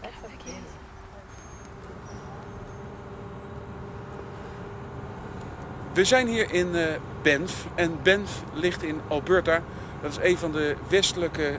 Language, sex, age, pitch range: Dutch, male, 50-69, 115-170 Hz